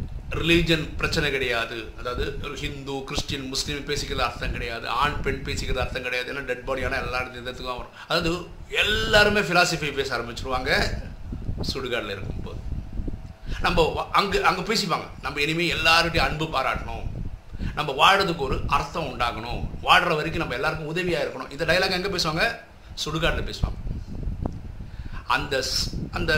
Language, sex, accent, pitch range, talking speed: Tamil, male, native, 120-175 Hz, 130 wpm